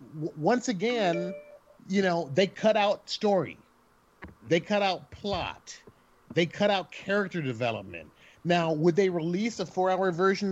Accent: American